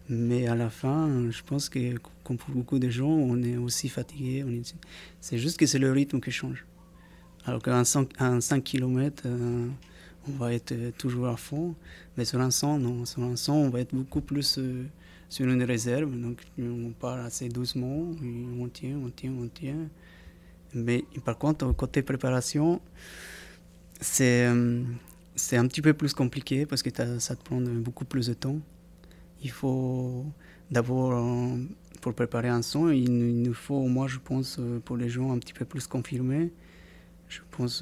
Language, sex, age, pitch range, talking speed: French, male, 20-39, 120-135 Hz, 160 wpm